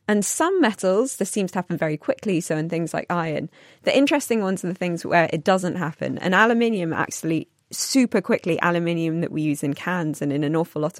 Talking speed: 220 wpm